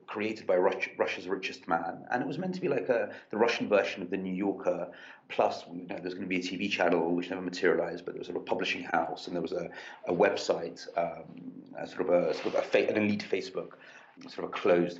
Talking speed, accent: 255 wpm, British